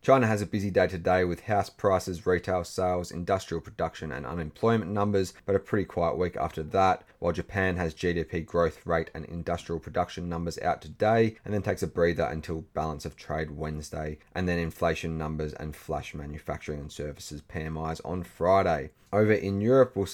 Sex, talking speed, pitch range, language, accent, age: male, 180 wpm, 80-100 Hz, English, Australian, 30-49